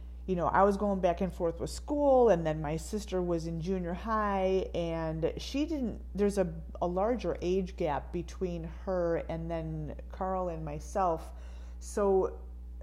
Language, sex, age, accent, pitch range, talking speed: English, female, 30-49, American, 150-185 Hz, 165 wpm